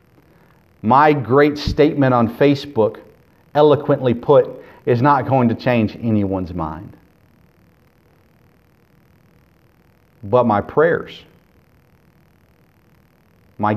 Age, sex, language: 40-59, male, English